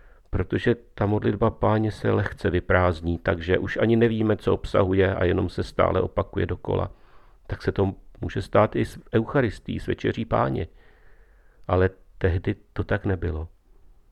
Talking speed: 150 wpm